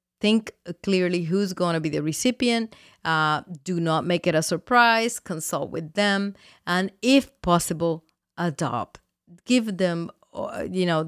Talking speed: 140 wpm